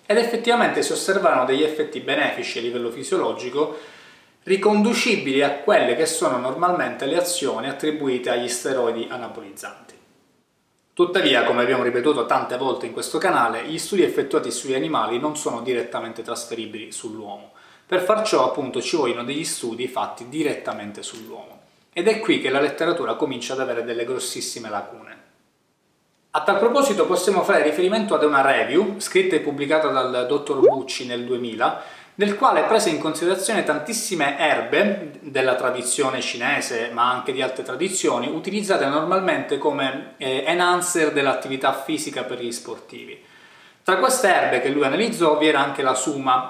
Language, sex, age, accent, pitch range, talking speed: Italian, male, 20-39, native, 130-200 Hz, 150 wpm